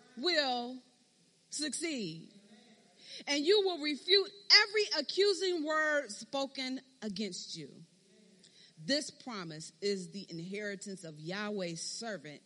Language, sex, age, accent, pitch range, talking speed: English, female, 40-59, American, 190-290 Hz, 95 wpm